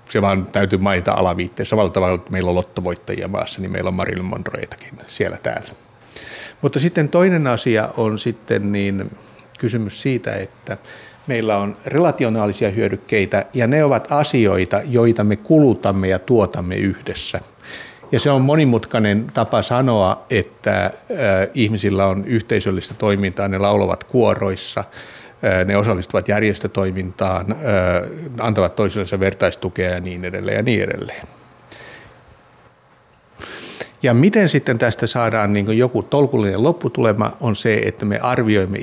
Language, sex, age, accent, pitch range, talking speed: Finnish, male, 60-79, native, 100-125 Hz, 130 wpm